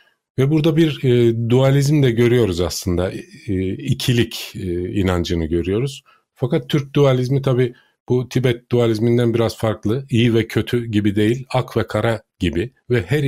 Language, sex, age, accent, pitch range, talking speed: Turkish, male, 40-59, native, 95-115 Hz, 150 wpm